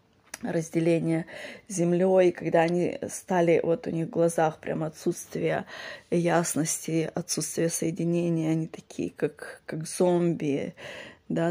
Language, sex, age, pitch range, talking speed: Russian, female, 20-39, 160-175 Hz, 110 wpm